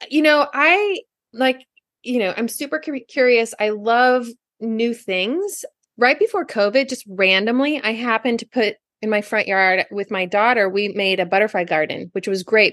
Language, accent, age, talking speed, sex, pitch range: English, American, 20-39, 175 wpm, female, 185-240 Hz